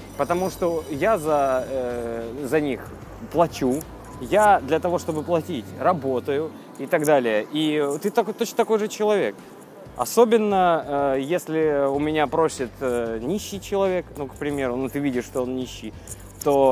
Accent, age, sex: native, 20-39, male